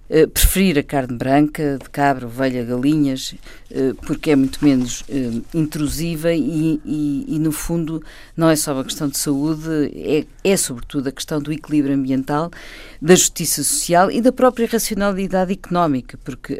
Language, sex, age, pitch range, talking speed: Portuguese, female, 50-69, 140-180 Hz, 150 wpm